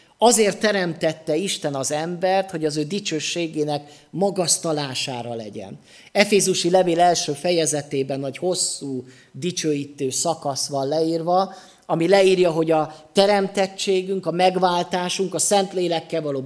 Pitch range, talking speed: 145-185 Hz, 115 wpm